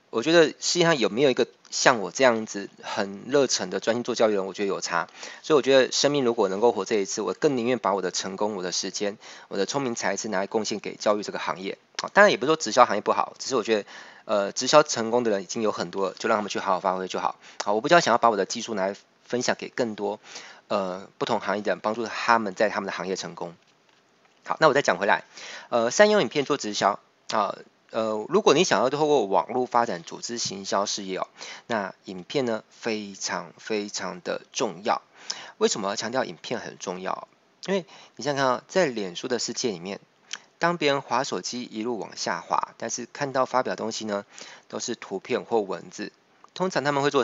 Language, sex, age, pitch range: Chinese, male, 20-39, 105-145 Hz